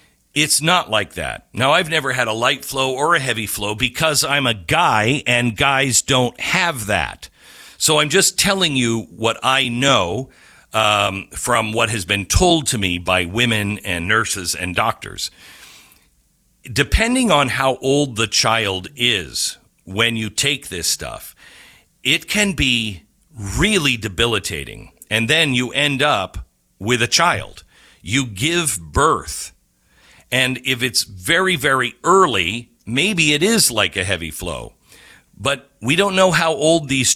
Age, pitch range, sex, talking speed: 50-69, 110-145 Hz, male, 150 wpm